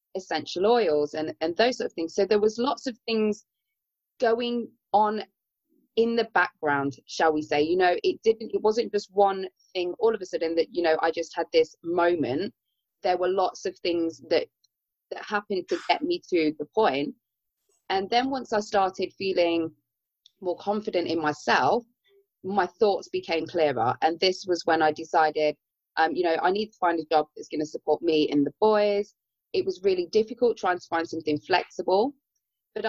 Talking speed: 190 wpm